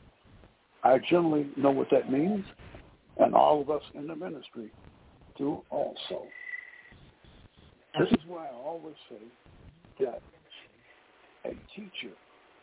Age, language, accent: 60-79, English, American